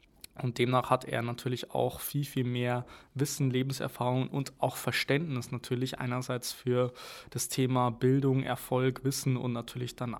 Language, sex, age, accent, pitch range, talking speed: German, male, 20-39, German, 120-135 Hz, 145 wpm